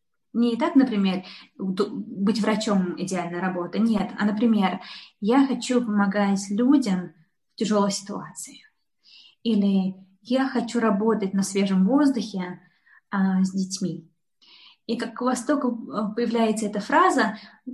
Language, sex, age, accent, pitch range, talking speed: Russian, female, 20-39, native, 195-240 Hz, 115 wpm